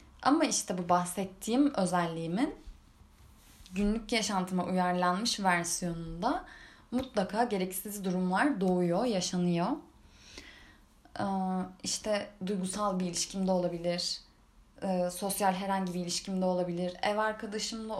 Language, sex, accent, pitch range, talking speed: Turkish, female, native, 180-250 Hz, 95 wpm